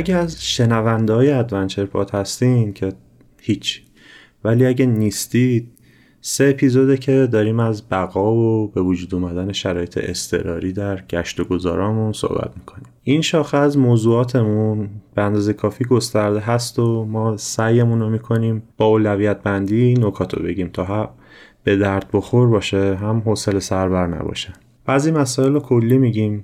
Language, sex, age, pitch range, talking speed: Persian, male, 30-49, 100-125 Hz, 140 wpm